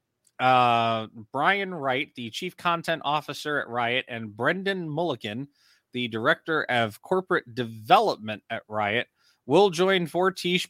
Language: English